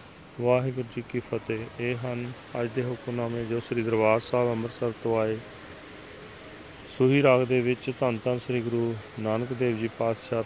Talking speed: 155 wpm